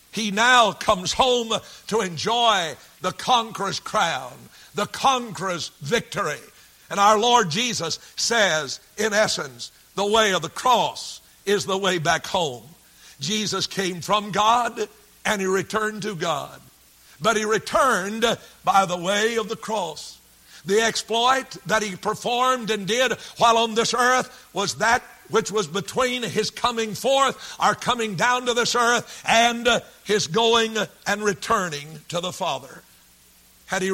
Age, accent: 60-79, American